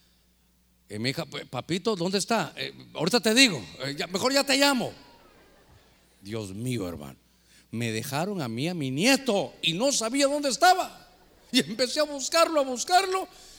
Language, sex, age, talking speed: Spanish, male, 50-69, 165 wpm